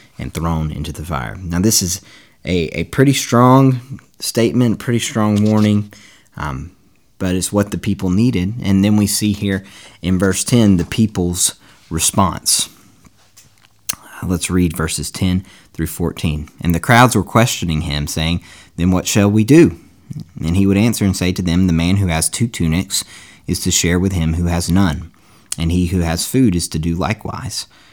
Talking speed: 180 wpm